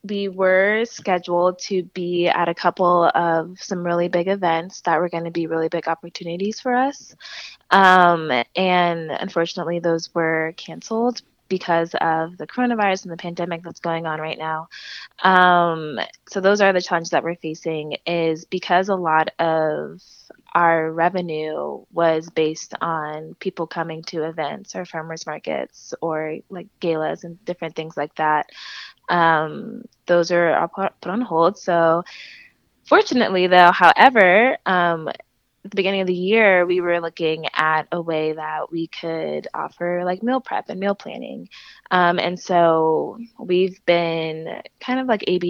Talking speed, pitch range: 155 wpm, 165-185 Hz